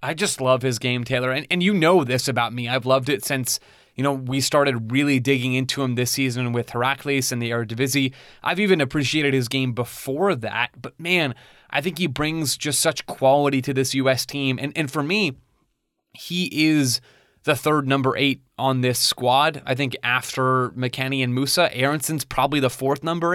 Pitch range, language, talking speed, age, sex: 130-150 Hz, English, 200 wpm, 20-39, male